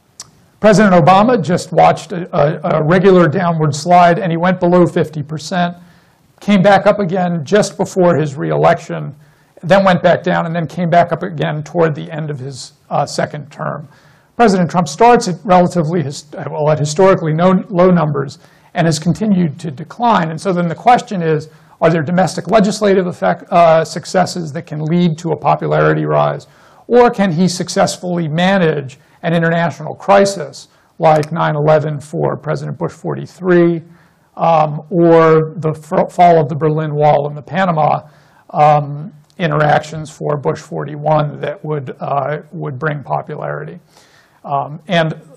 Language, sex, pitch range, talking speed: English, male, 150-180 Hz, 150 wpm